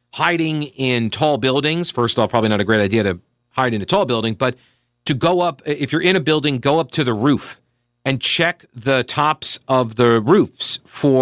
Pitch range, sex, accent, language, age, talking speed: 115-145 Hz, male, American, English, 50-69, 215 wpm